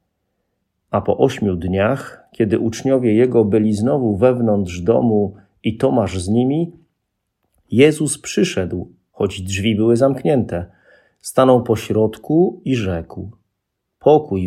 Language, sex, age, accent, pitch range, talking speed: Polish, male, 40-59, native, 100-135 Hz, 110 wpm